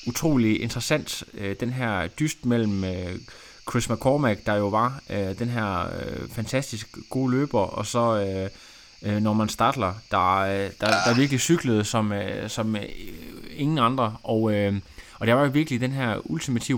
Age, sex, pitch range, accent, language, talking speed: 20-39, male, 105-130 Hz, native, Danish, 135 wpm